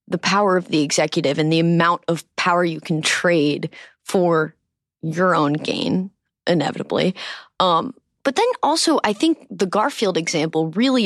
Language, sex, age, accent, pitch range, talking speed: English, female, 20-39, American, 170-235 Hz, 150 wpm